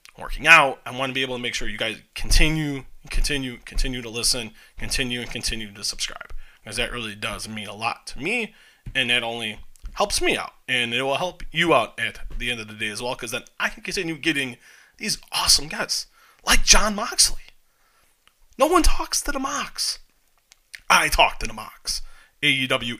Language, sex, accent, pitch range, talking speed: English, male, American, 115-135 Hz, 195 wpm